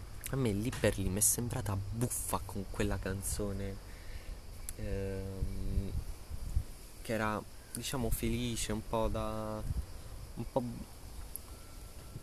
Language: Italian